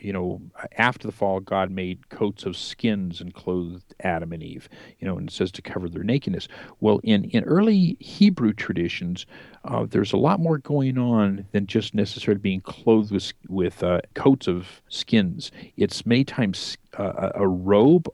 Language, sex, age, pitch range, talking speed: English, male, 50-69, 95-135 Hz, 180 wpm